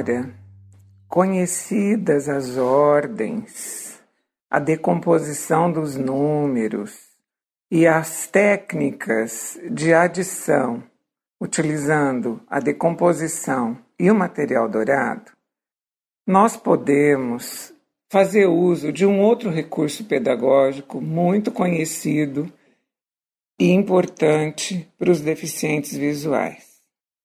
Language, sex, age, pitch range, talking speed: Portuguese, male, 60-79, 145-180 Hz, 80 wpm